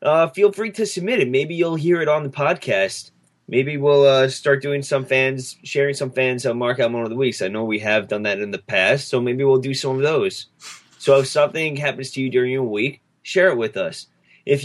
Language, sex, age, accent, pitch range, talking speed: English, male, 20-39, American, 120-145 Hz, 240 wpm